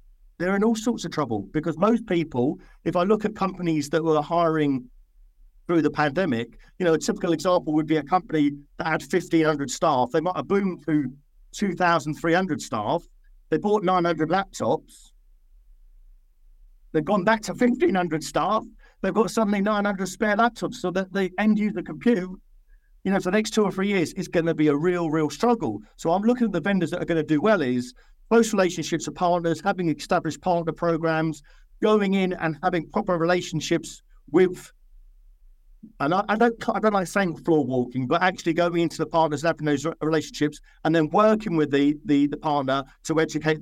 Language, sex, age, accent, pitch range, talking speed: English, male, 50-69, British, 150-195 Hz, 185 wpm